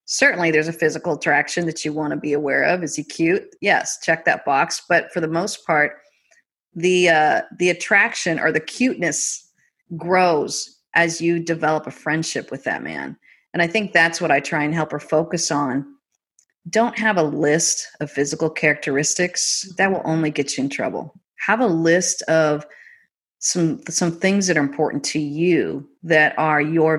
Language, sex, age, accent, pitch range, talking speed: English, female, 40-59, American, 155-185 Hz, 180 wpm